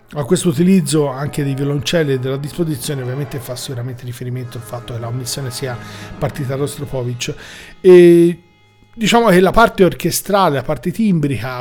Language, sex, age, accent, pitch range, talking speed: Italian, male, 40-59, native, 140-170 Hz, 155 wpm